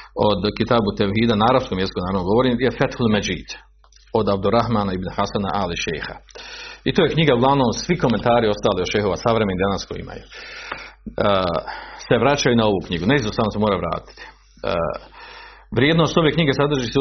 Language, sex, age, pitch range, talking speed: Croatian, male, 40-59, 110-140 Hz, 175 wpm